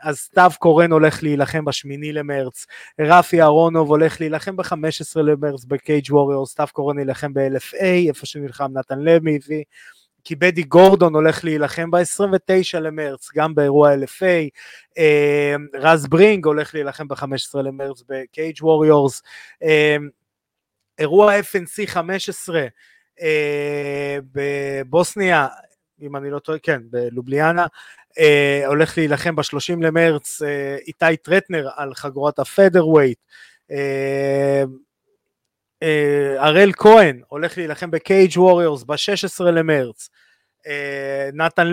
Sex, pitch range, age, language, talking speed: male, 140-175 Hz, 20-39, Hebrew, 110 wpm